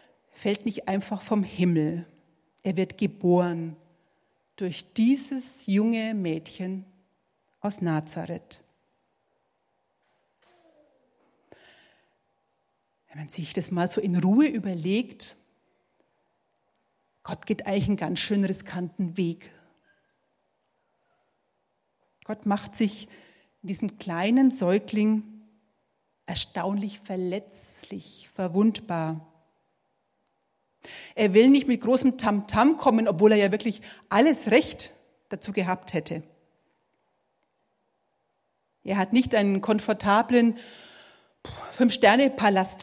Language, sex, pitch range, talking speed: German, female, 175-220 Hz, 90 wpm